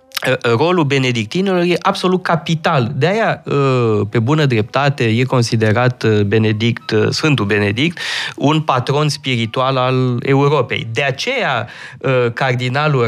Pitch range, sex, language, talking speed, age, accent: 115-150 Hz, male, Romanian, 100 wpm, 20-39, native